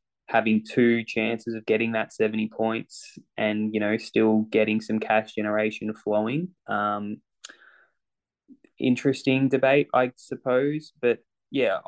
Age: 10-29